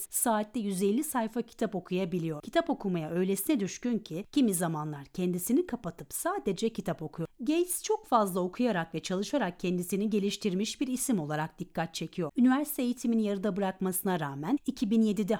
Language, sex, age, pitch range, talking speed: Turkish, female, 40-59, 175-245 Hz, 140 wpm